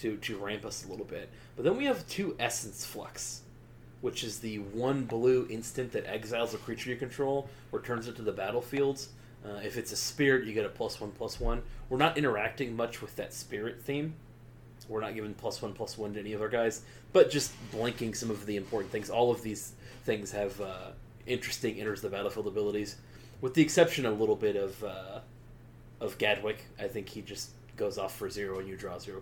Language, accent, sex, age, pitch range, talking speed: English, American, male, 30-49, 105-125 Hz, 220 wpm